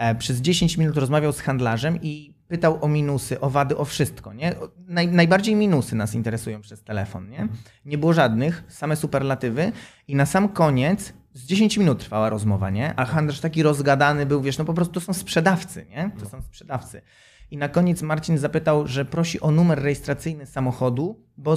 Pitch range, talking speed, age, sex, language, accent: 125-160 Hz, 180 wpm, 20-39, male, Polish, native